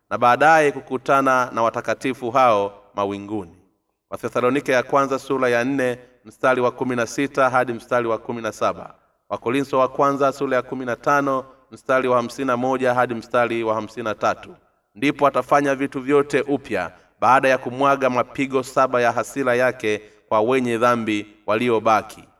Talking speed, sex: 135 wpm, male